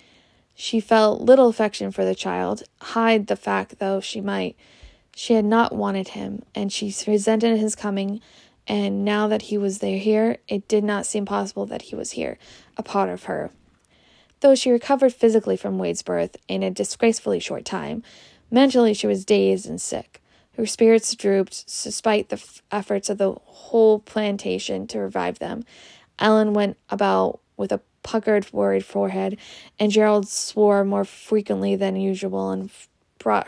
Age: 20-39